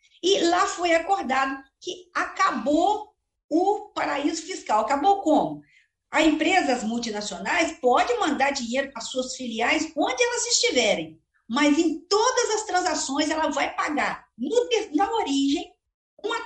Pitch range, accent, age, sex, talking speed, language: 255-360 Hz, Brazilian, 50-69, female, 135 wpm, Portuguese